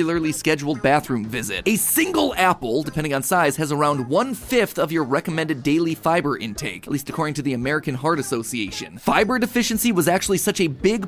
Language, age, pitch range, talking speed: English, 30-49, 145-200 Hz, 180 wpm